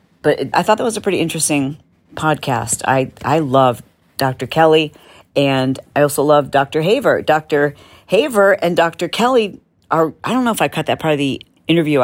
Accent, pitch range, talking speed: American, 140-180 Hz, 185 wpm